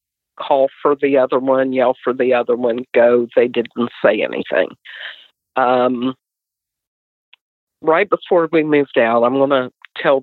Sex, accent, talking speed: female, American, 145 wpm